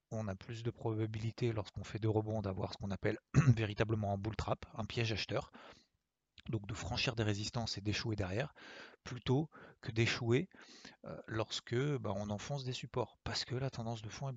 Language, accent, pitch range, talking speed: French, French, 100-115 Hz, 185 wpm